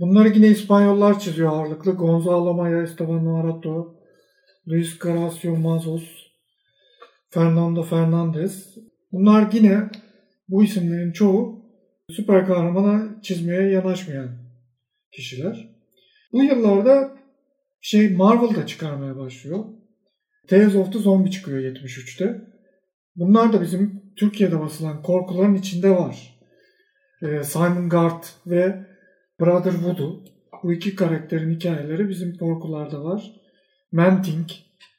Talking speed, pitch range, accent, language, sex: 100 wpm, 165-210 Hz, native, Turkish, male